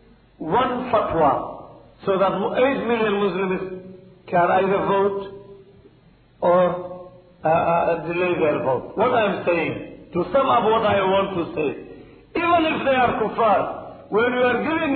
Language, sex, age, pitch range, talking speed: Swahili, male, 50-69, 195-255 Hz, 140 wpm